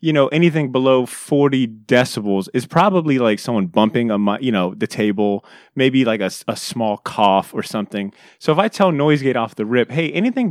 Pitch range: 105-140 Hz